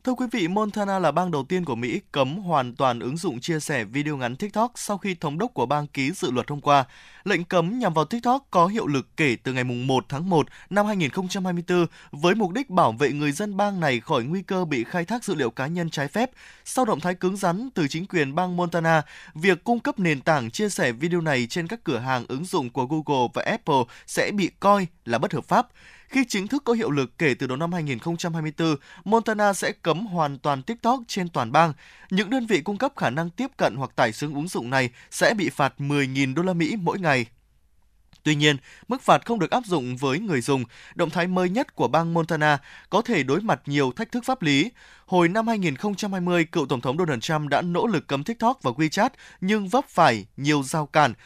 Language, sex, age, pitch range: Vietnamese, male, 20-39, 145-200 Hz